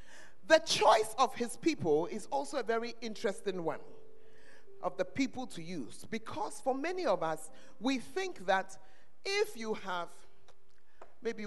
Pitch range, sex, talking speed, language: 165-255 Hz, male, 145 wpm, English